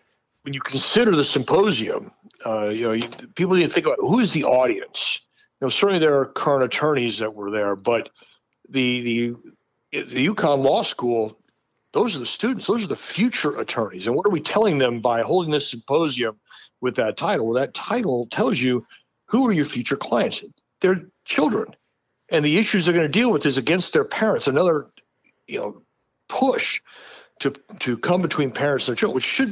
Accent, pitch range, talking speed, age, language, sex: American, 115-155 Hz, 195 wpm, 60-79, English, male